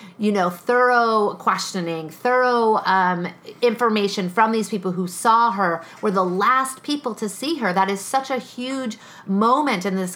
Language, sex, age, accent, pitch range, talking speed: English, female, 40-59, American, 180-230 Hz, 165 wpm